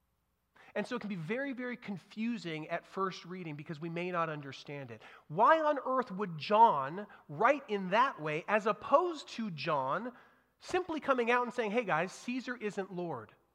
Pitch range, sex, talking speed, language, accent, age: 155-230 Hz, male, 175 wpm, English, American, 30-49